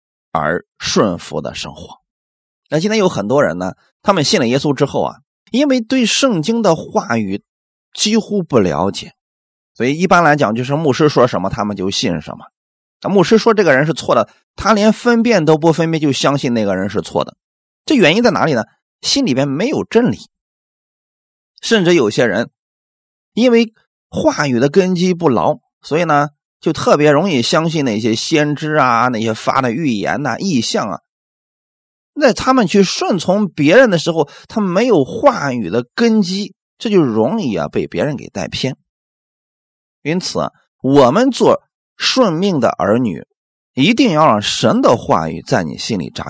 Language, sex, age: Chinese, male, 30-49